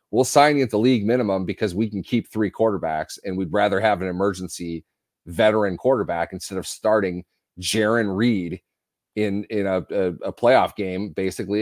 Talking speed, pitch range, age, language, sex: 170 wpm, 95-120 Hz, 40-59, English, male